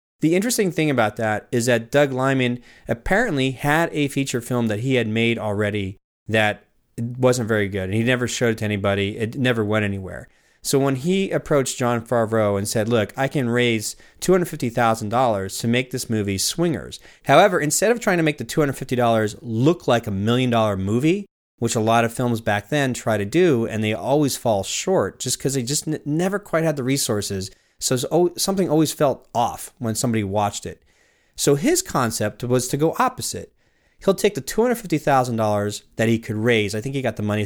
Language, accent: English, American